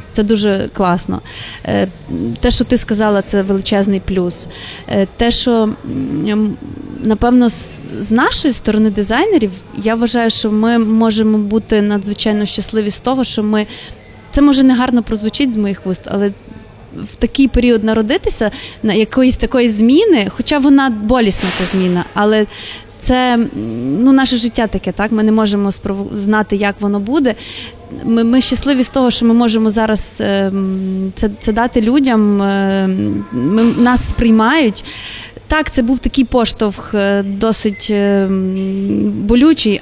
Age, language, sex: 20-39, Ukrainian, female